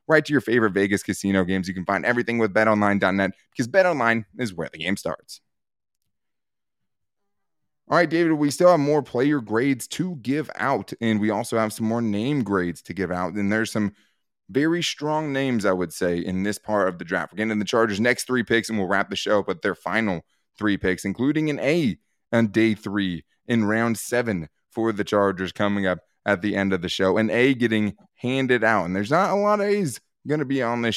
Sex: male